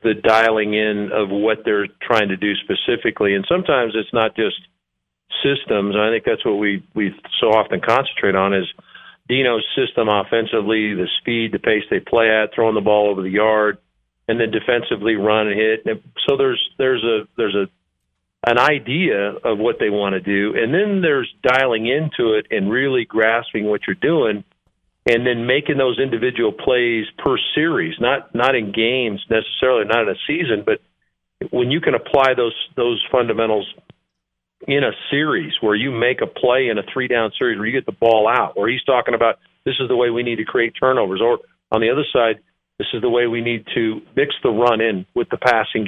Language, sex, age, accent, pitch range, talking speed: English, male, 50-69, American, 105-125 Hz, 195 wpm